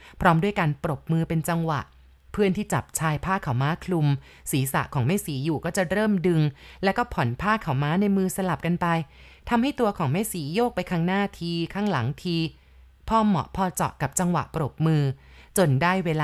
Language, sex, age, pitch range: Thai, female, 30-49, 155-200 Hz